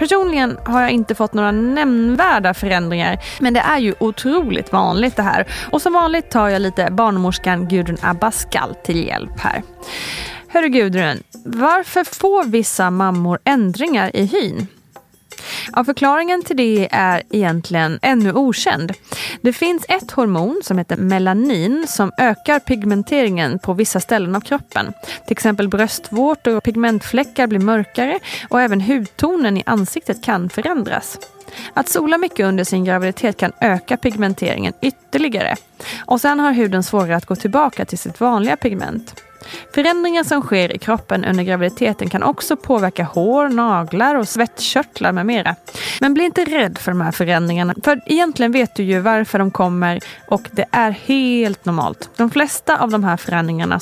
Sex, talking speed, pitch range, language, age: female, 155 wpm, 190-275 Hz, Swedish, 20-39